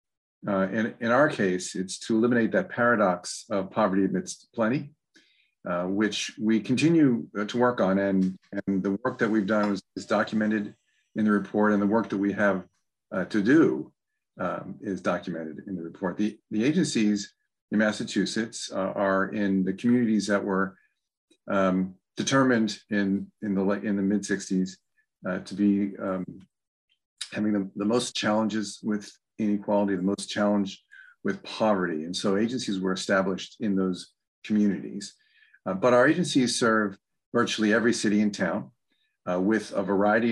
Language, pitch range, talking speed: English, 95-110 Hz, 155 wpm